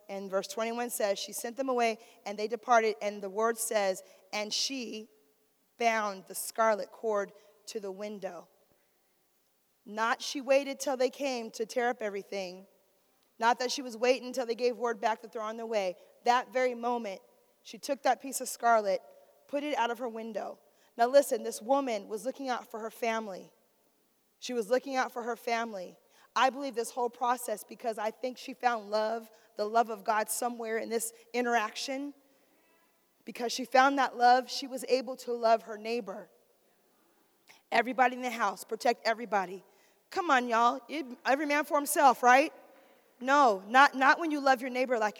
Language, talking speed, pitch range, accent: English, 180 wpm, 220-260 Hz, American